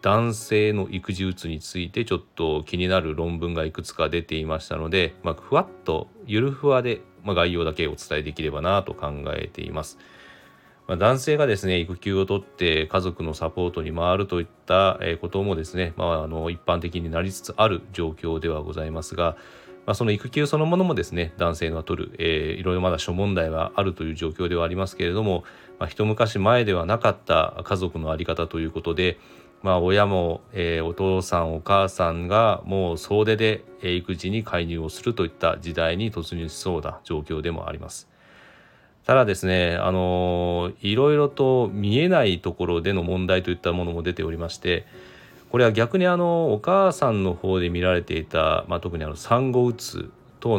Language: Japanese